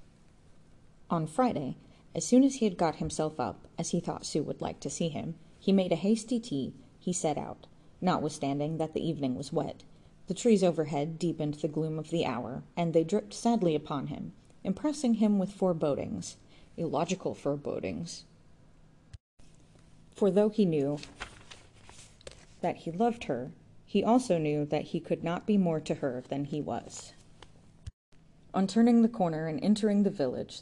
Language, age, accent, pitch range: English, 30-49, American, 150-190 Hz